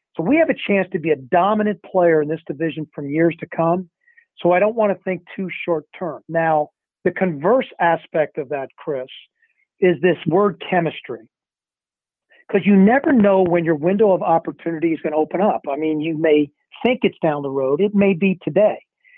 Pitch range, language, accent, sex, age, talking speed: 165-210 Hz, English, American, male, 50-69, 200 wpm